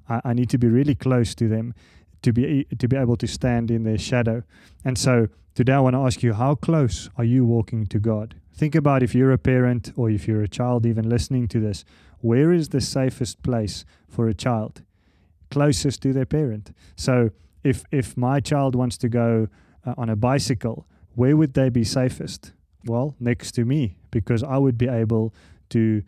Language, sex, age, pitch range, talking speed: English, male, 30-49, 110-130 Hz, 200 wpm